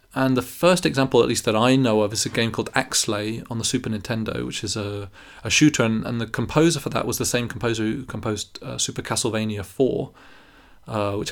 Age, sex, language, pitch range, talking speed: 20-39, male, English, 110-130 Hz, 225 wpm